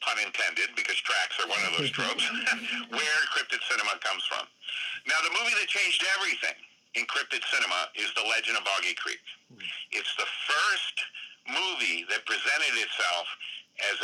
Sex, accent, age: male, American, 60-79